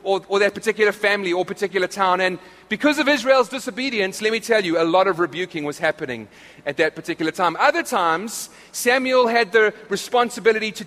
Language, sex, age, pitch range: English, male, 30-49, 180-230 Hz